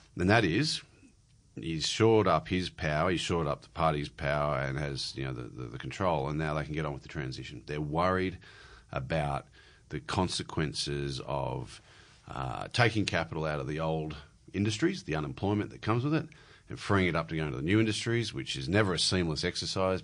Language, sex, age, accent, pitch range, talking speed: English, male, 40-59, Australian, 75-105 Hz, 200 wpm